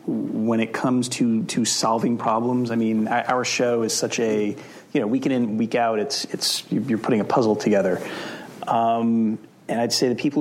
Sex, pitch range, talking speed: male, 115-140 Hz, 190 wpm